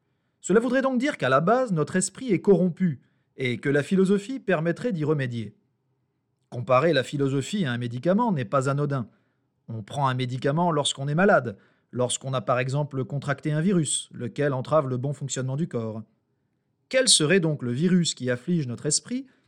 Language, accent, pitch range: French, French, 130-180 Hz